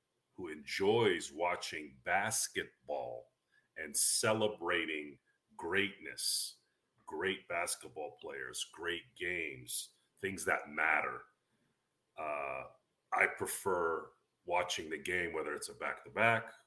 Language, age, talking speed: English, 40-59, 90 wpm